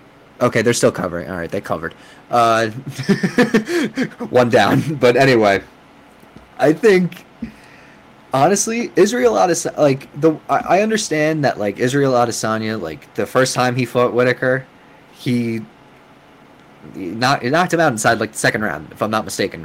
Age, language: 20-39, English